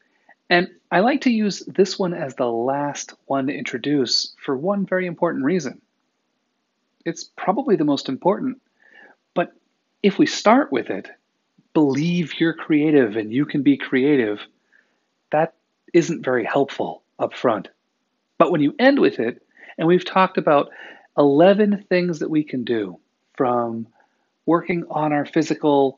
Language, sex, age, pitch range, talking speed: English, male, 40-59, 135-185 Hz, 150 wpm